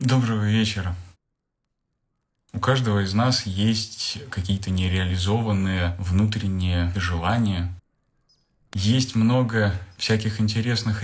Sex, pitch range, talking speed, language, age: male, 95-110 Hz, 80 wpm, Russian, 20-39